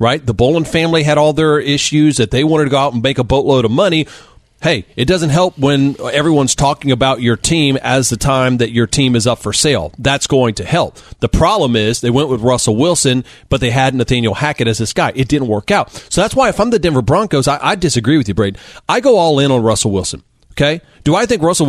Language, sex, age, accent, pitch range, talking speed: English, male, 40-59, American, 125-170 Hz, 250 wpm